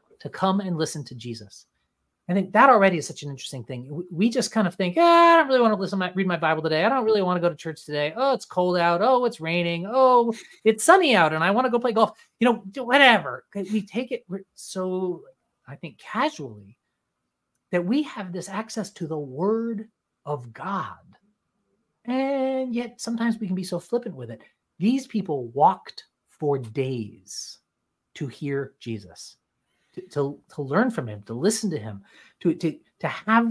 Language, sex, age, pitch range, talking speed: English, male, 30-49, 160-220 Hz, 195 wpm